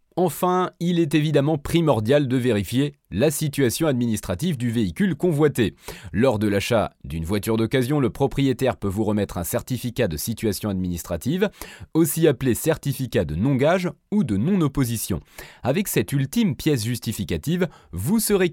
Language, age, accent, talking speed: French, 30-49, French, 145 wpm